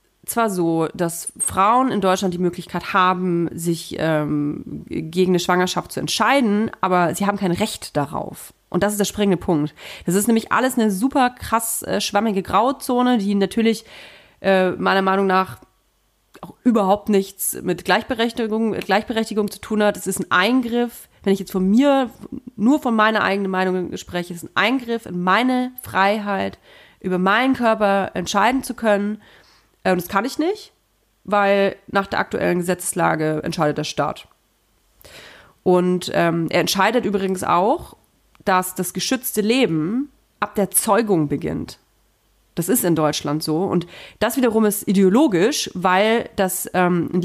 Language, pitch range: German, 180-225 Hz